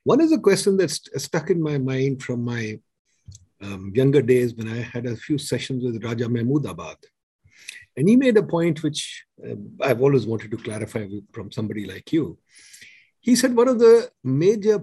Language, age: English, 50-69